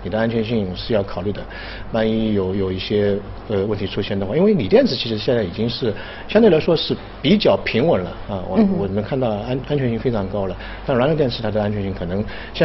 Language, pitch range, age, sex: Chinese, 100-130 Hz, 50-69, male